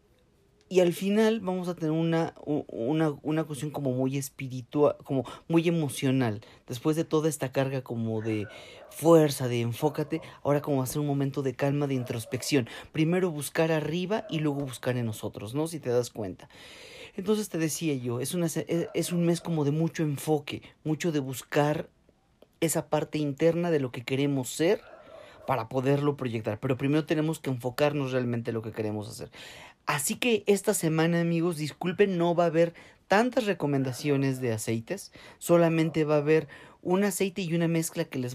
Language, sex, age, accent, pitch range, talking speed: Spanish, male, 40-59, Mexican, 135-170 Hz, 175 wpm